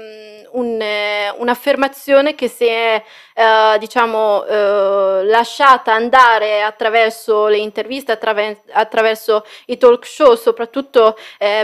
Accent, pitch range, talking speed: native, 220-265 Hz, 105 wpm